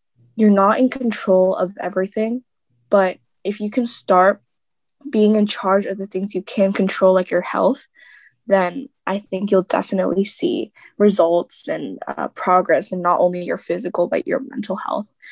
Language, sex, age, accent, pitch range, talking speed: English, female, 10-29, American, 185-220 Hz, 165 wpm